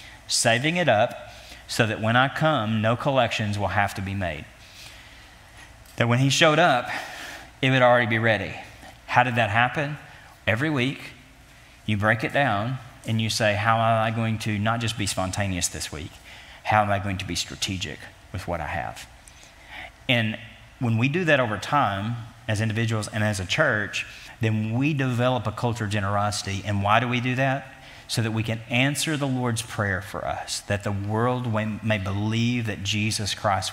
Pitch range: 105-120 Hz